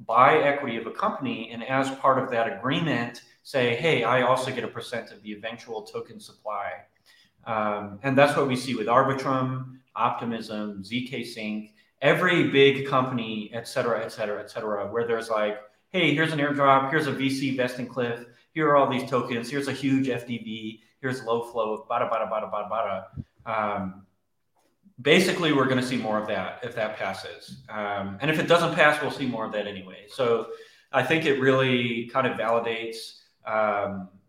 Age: 30-49